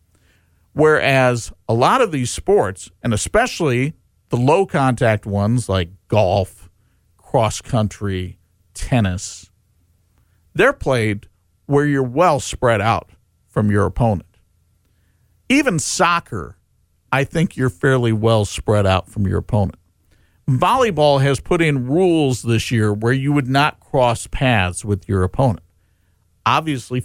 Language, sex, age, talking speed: English, male, 50-69, 120 wpm